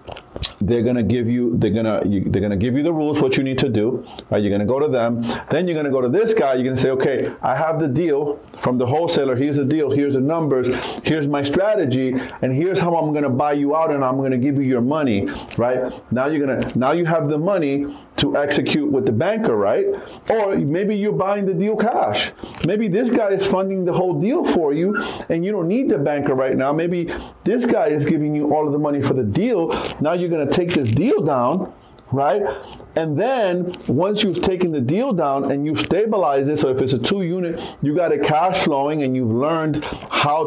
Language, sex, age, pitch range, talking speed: English, male, 30-49, 130-165 Hz, 225 wpm